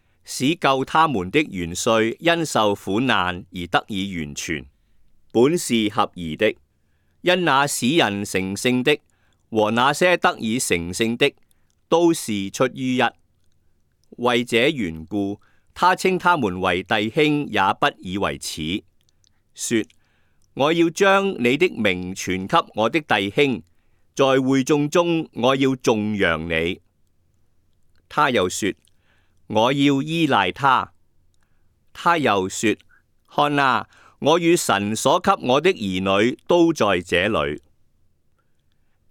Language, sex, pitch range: Chinese, male, 95-140 Hz